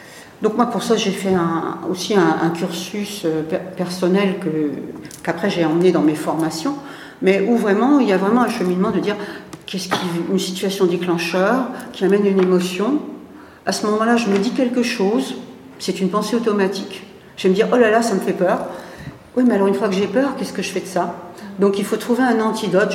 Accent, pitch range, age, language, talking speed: French, 175-225 Hz, 60-79, French, 215 wpm